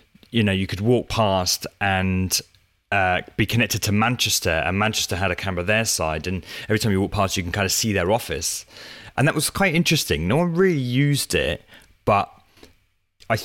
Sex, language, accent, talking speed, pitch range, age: male, English, British, 195 wpm, 95-115 Hz, 30-49